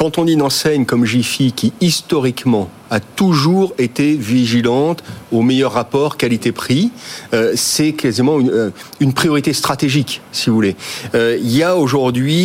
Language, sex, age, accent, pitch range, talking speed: French, male, 40-59, French, 120-155 Hz, 140 wpm